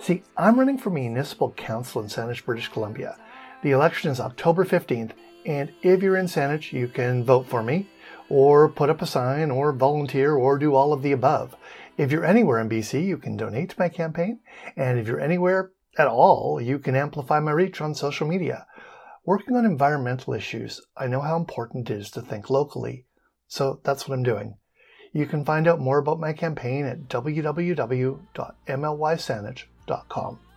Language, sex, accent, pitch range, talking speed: English, male, American, 130-165 Hz, 180 wpm